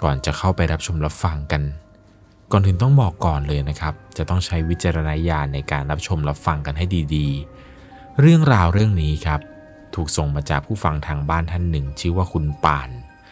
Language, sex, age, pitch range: Thai, male, 20-39, 75-95 Hz